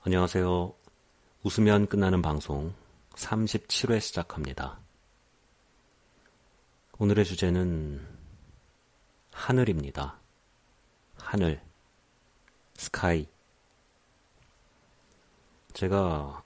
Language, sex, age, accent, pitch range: Korean, male, 40-59, native, 75-100 Hz